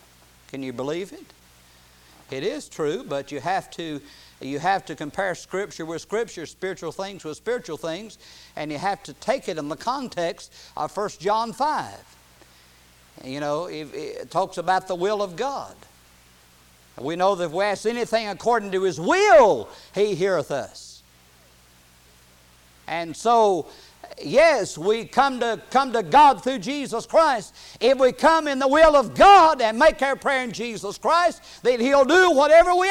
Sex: male